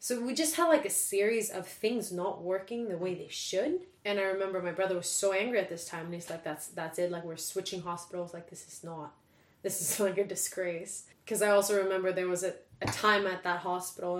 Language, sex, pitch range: English, female, 175-200 Hz